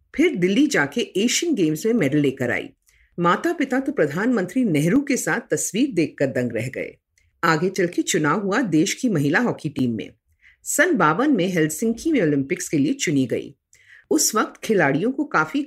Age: 50-69